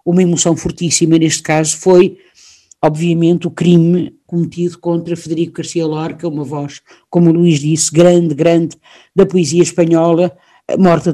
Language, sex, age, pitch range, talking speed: Portuguese, female, 50-69, 160-190 Hz, 145 wpm